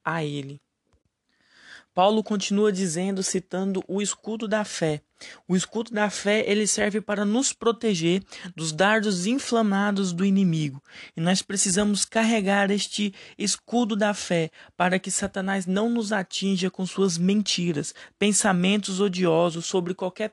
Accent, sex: Brazilian, male